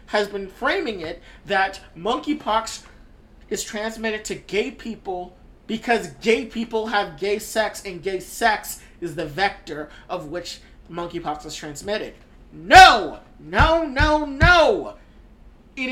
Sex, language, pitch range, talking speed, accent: male, English, 190-255 Hz, 125 wpm, American